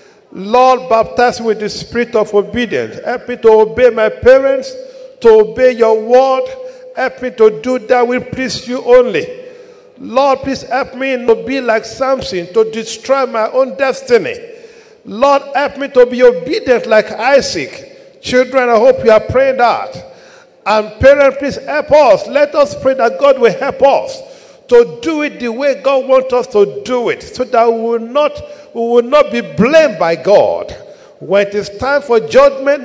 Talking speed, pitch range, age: 175 wpm, 220-290 Hz, 50-69